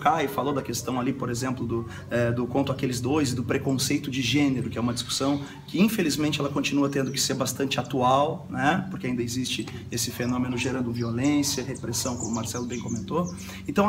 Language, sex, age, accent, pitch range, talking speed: Portuguese, male, 30-49, Brazilian, 130-200 Hz, 195 wpm